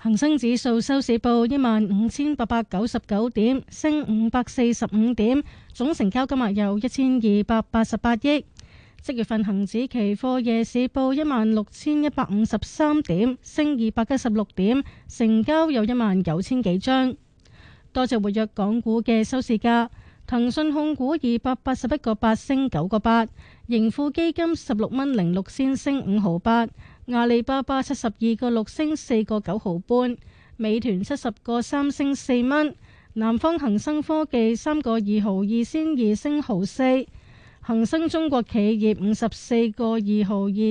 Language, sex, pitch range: Chinese, female, 220-275 Hz